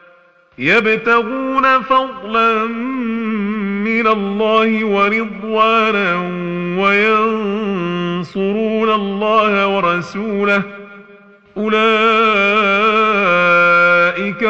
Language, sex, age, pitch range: Arabic, male, 40-59, 175-220 Hz